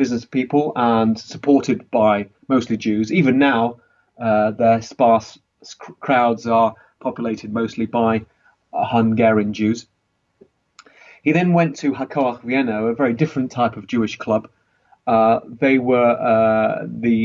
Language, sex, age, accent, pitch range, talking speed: English, male, 30-49, British, 110-130 Hz, 130 wpm